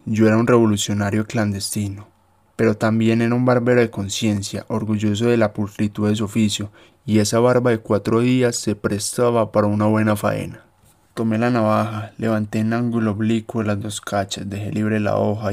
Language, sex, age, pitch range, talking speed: Spanish, male, 20-39, 105-115 Hz, 175 wpm